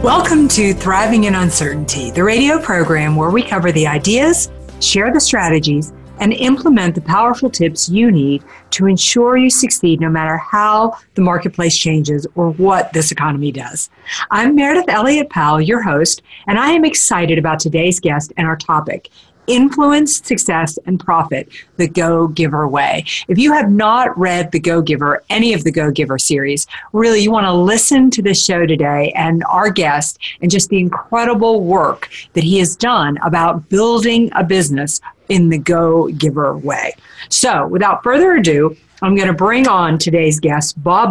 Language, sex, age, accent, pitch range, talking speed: English, female, 40-59, American, 160-220 Hz, 165 wpm